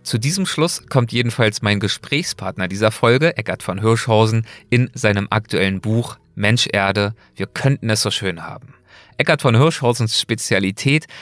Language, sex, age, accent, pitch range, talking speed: German, male, 30-49, German, 105-135 Hz, 150 wpm